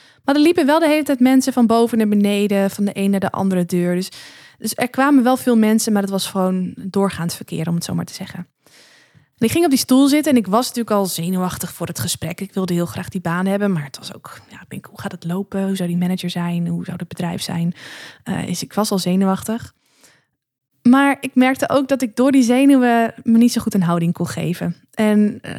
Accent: Dutch